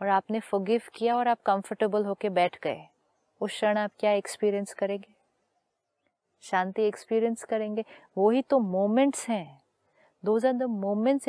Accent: native